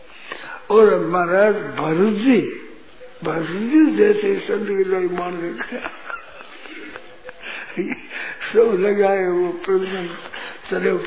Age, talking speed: 60-79, 60 wpm